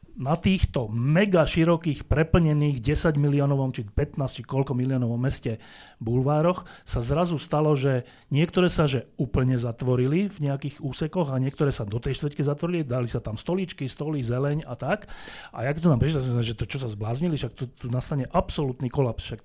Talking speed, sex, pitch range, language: 180 wpm, male, 125-155 Hz, Slovak